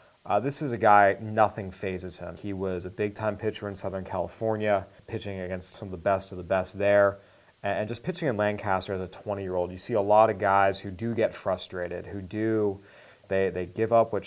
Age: 30-49